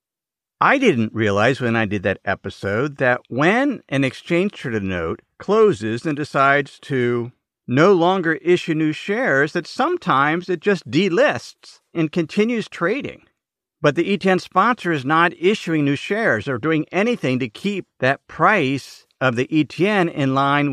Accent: American